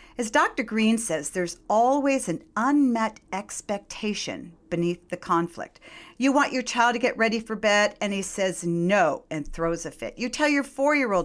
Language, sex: English, female